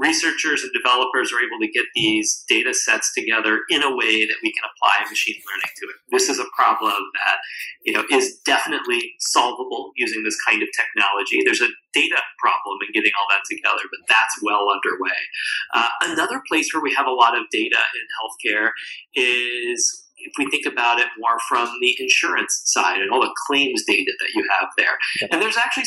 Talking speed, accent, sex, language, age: 195 wpm, American, male, English, 30-49